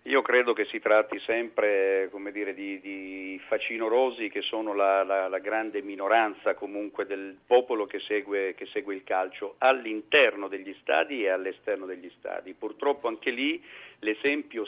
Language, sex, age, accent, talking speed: Italian, male, 50-69, native, 155 wpm